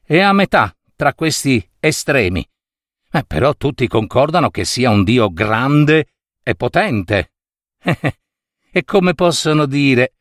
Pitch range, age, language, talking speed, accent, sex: 110-165 Hz, 50-69, Italian, 130 wpm, native, male